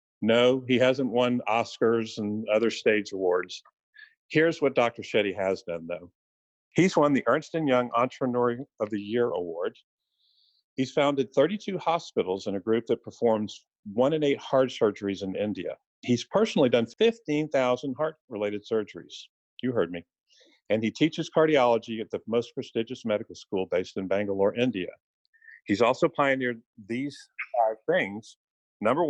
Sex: male